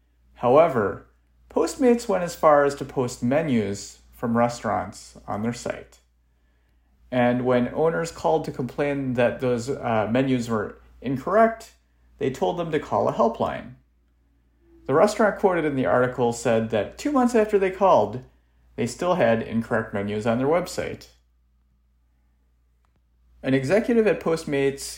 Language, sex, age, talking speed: English, male, 40-59, 140 wpm